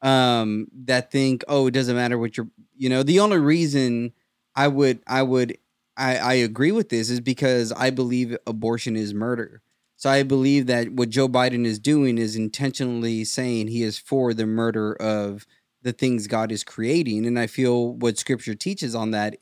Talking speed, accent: 190 wpm, American